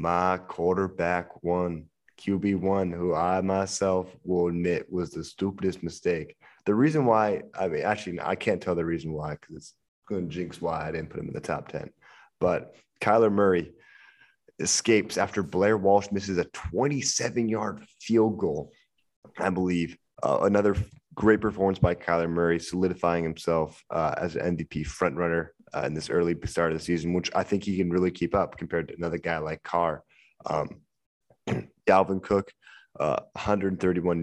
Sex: male